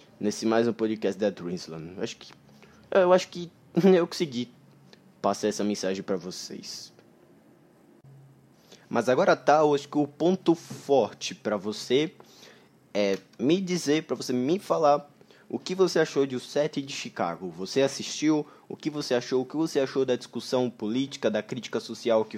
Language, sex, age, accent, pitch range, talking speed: Portuguese, male, 20-39, Brazilian, 105-140 Hz, 165 wpm